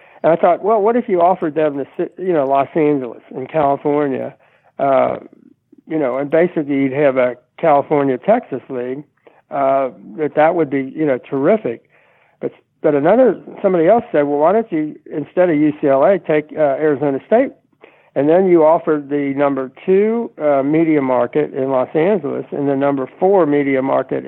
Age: 60-79